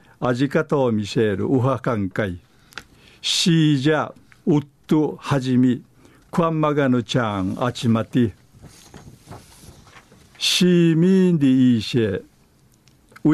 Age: 60-79